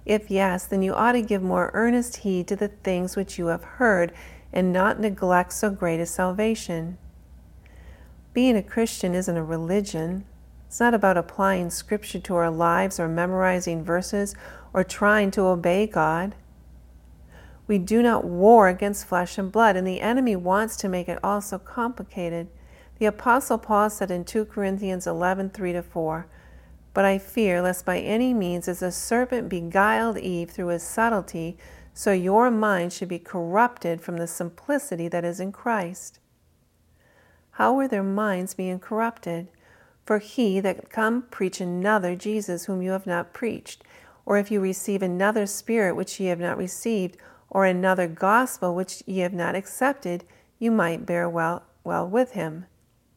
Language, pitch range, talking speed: English, 175-210 Hz, 165 wpm